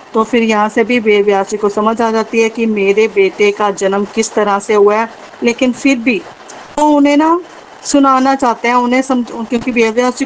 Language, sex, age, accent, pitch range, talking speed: Hindi, female, 40-59, native, 215-255 Hz, 195 wpm